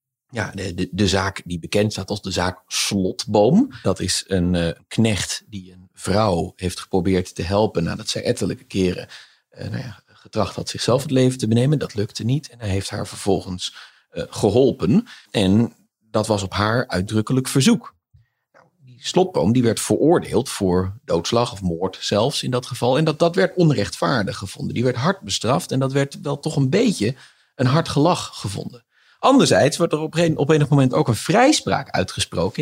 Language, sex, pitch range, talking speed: Dutch, male, 100-140 Hz, 190 wpm